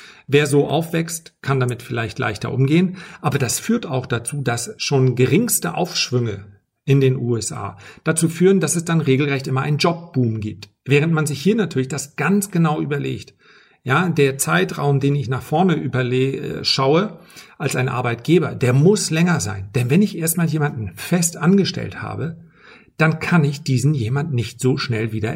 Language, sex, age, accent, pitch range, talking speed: German, male, 50-69, German, 130-175 Hz, 170 wpm